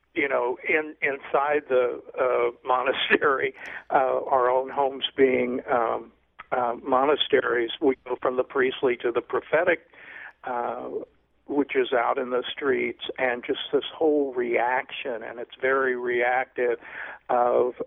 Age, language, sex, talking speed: 50-69, English, male, 135 wpm